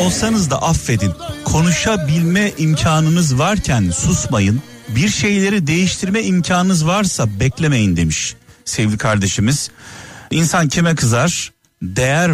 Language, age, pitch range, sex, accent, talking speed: Turkish, 40-59, 115-170 Hz, male, native, 95 wpm